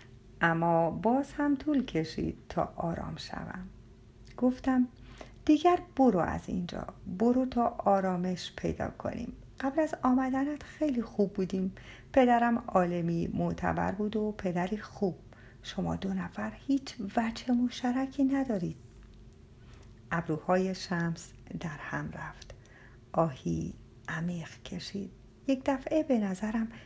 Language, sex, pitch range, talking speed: Persian, female, 165-240 Hz, 110 wpm